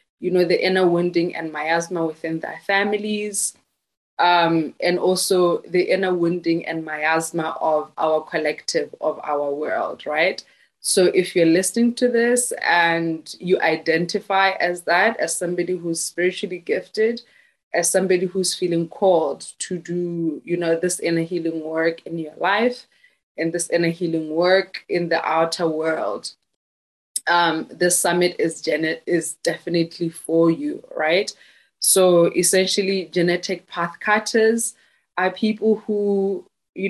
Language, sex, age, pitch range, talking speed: English, female, 20-39, 165-190 Hz, 140 wpm